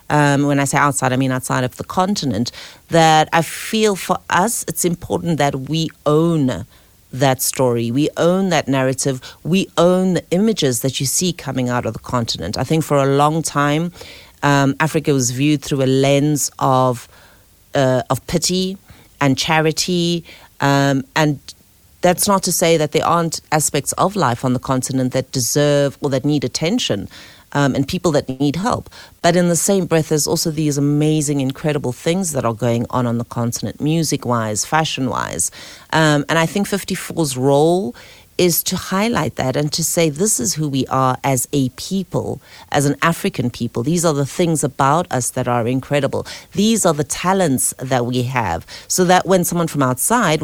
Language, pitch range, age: English, 130-170 Hz, 40-59